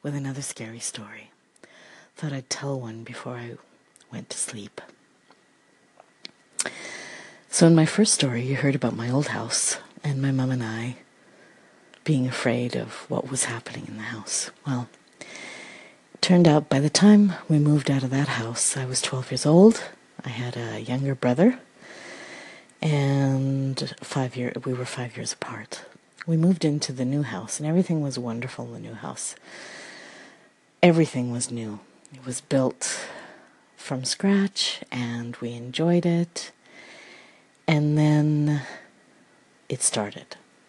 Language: English